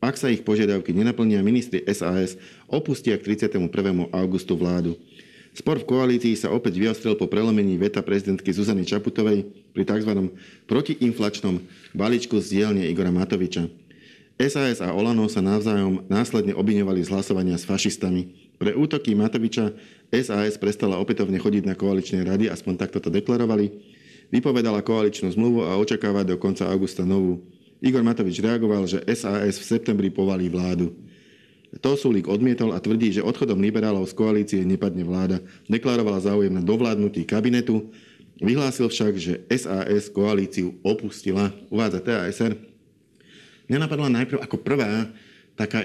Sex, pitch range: male, 95-115 Hz